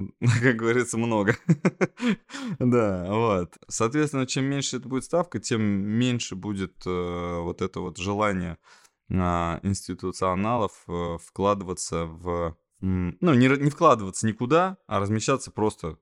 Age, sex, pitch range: 20-39, male, 90-115 Hz